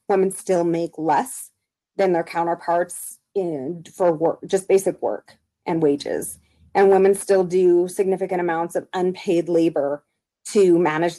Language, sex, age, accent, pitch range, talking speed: English, female, 30-49, American, 165-195 Hz, 140 wpm